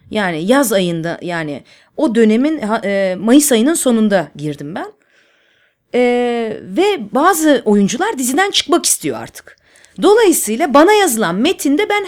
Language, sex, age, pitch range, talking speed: Turkish, female, 30-49, 205-290 Hz, 120 wpm